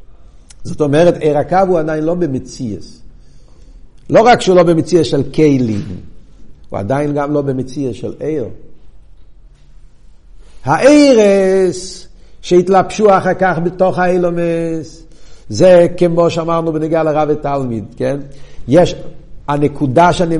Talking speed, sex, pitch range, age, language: 110 wpm, male, 145-205 Hz, 60-79, Hebrew